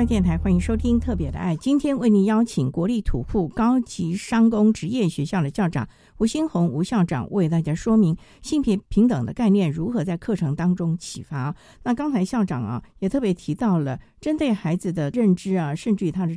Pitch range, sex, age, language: 160-225 Hz, female, 50-69, Chinese